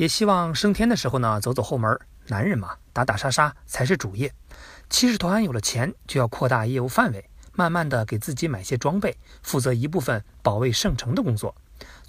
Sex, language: male, Chinese